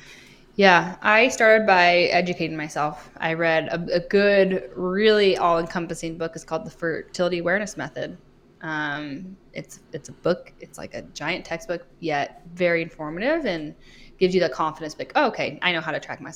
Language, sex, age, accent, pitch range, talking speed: English, female, 10-29, American, 165-195 Hz, 170 wpm